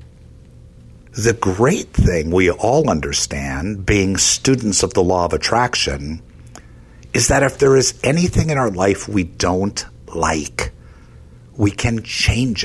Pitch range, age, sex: 75-110 Hz, 60-79, male